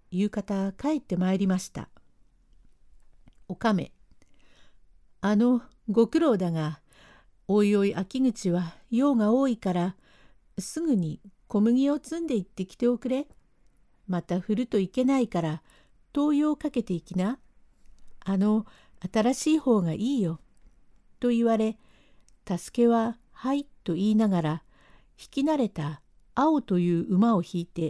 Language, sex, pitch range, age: Japanese, female, 180-245 Hz, 60-79